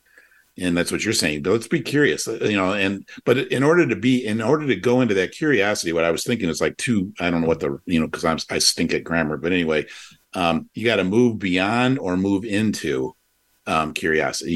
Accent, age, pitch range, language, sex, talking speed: American, 50-69, 90-110 Hz, English, male, 225 wpm